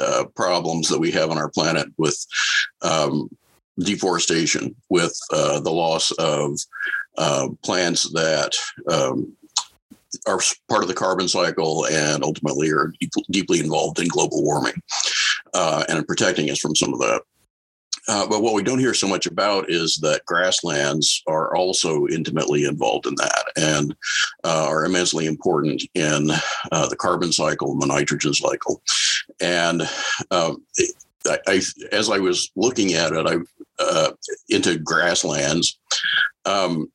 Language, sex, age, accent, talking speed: English, male, 50-69, American, 145 wpm